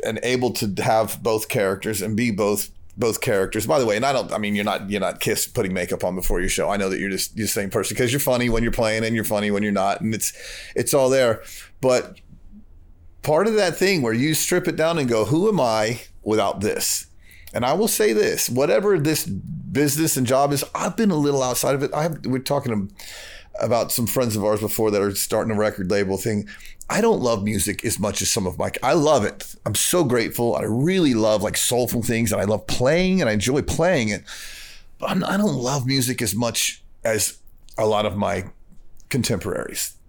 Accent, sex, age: American, male, 30-49